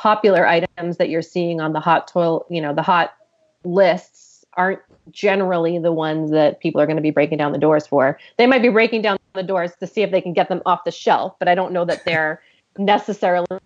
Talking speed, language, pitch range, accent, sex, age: 235 wpm, English, 160-195 Hz, American, female, 30-49